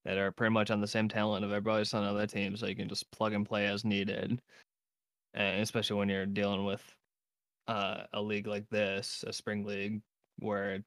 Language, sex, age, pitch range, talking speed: English, male, 20-39, 100-115 Hz, 205 wpm